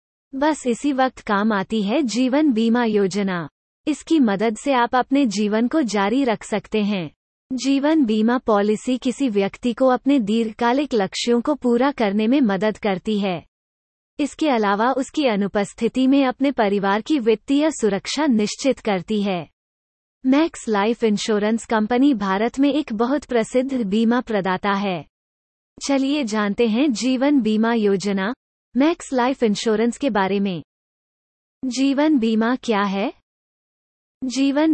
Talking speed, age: 115 wpm, 30-49